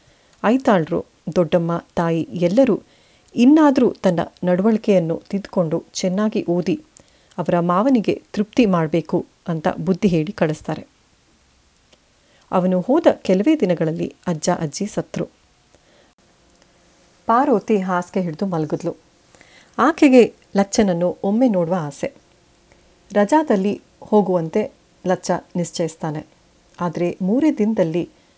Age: 30-49